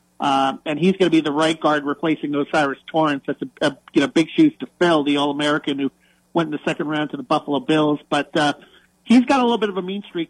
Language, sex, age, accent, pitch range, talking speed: English, male, 40-59, American, 145-165 Hz, 255 wpm